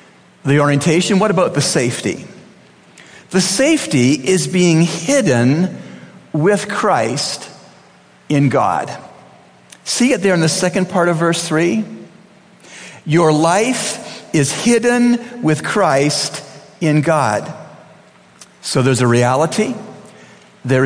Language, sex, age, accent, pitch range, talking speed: English, male, 50-69, American, 145-200 Hz, 110 wpm